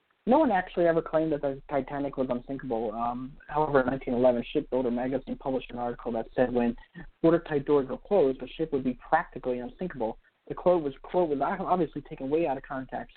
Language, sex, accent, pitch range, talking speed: English, male, American, 120-160 Hz, 195 wpm